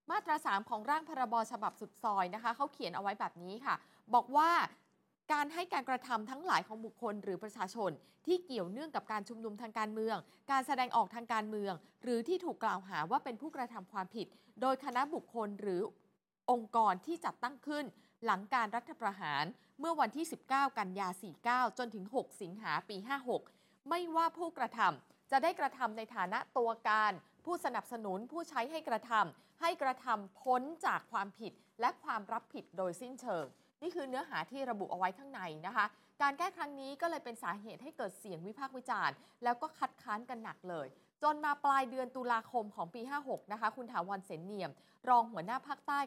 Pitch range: 200-270 Hz